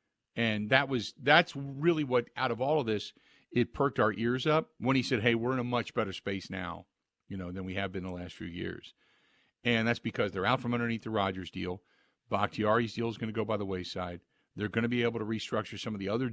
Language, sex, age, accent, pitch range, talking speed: English, male, 50-69, American, 100-125 Hz, 245 wpm